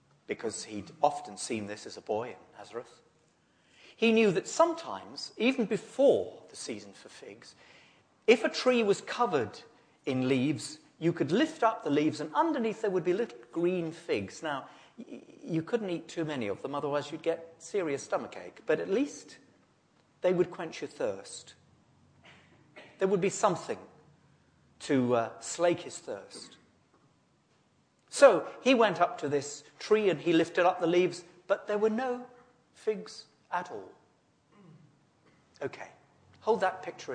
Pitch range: 150-225 Hz